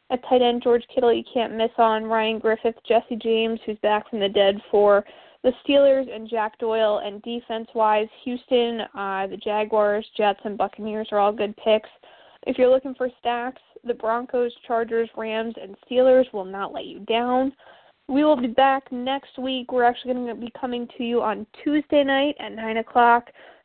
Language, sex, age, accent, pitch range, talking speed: English, female, 20-39, American, 225-255 Hz, 185 wpm